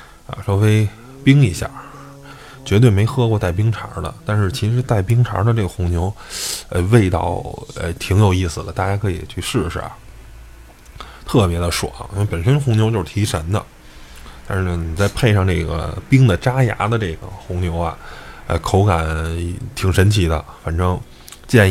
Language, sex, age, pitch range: Chinese, male, 20-39, 85-110 Hz